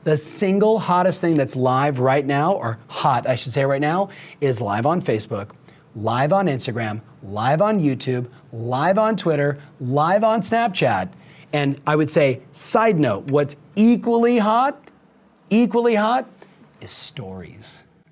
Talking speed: 145 wpm